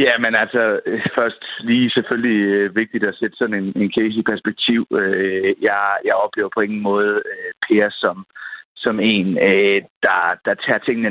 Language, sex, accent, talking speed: Danish, male, native, 180 wpm